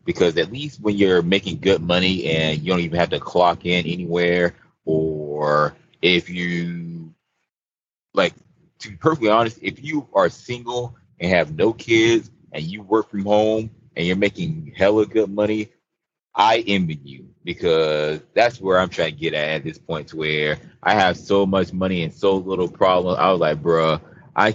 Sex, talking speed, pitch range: male, 180 wpm, 85-125 Hz